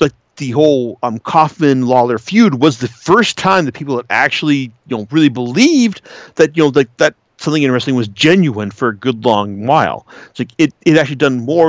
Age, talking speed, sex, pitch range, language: 40-59, 205 wpm, male, 115-155 Hz, English